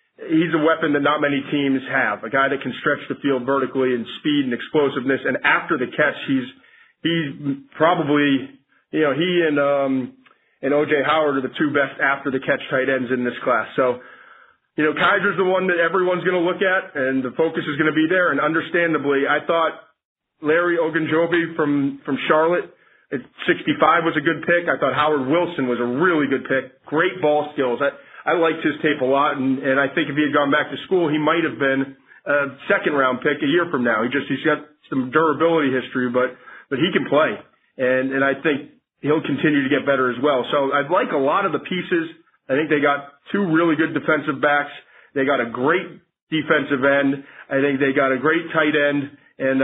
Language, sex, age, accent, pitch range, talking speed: English, male, 30-49, American, 135-160 Hz, 215 wpm